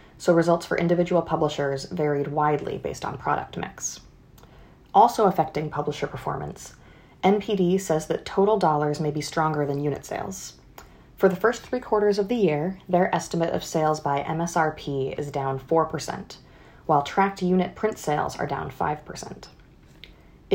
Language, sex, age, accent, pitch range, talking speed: English, female, 30-49, American, 150-190 Hz, 150 wpm